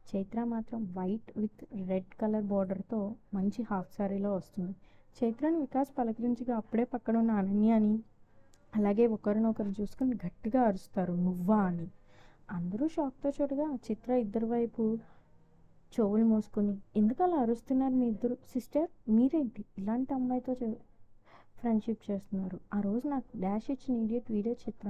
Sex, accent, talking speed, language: female, native, 130 wpm, Telugu